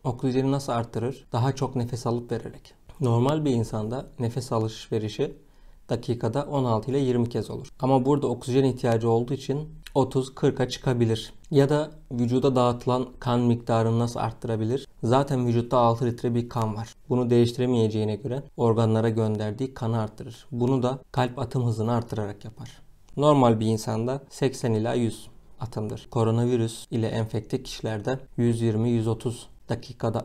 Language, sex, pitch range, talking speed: Turkish, male, 115-135 Hz, 135 wpm